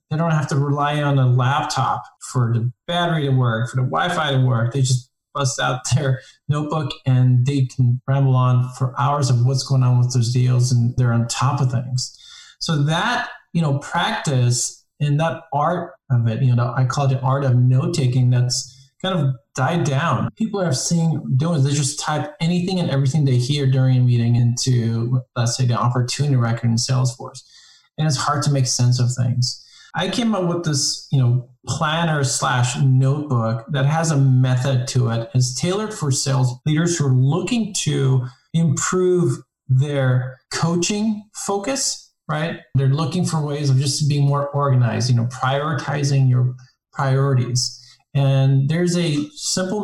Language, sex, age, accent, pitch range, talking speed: English, male, 20-39, American, 125-150 Hz, 175 wpm